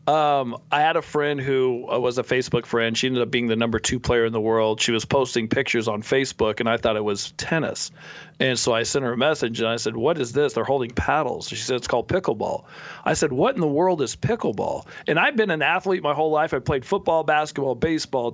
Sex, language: male, English